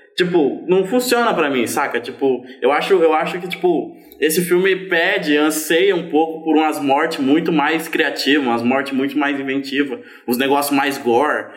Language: Portuguese